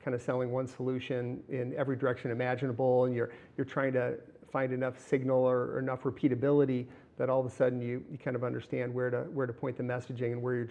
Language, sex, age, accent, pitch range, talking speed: English, male, 40-59, American, 125-140 Hz, 230 wpm